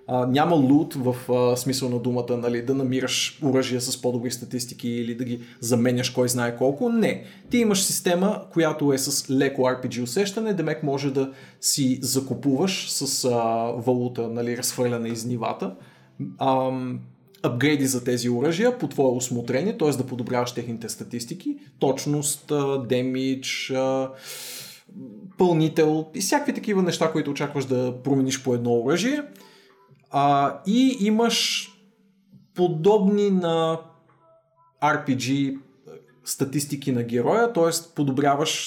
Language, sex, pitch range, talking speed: Bulgarian, male, 125-165 Hz, 130 wpm